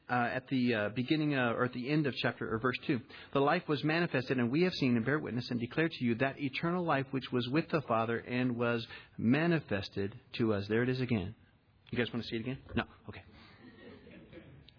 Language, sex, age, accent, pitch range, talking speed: English, male, 40-59, American, 115-155 Hz, 225 wpm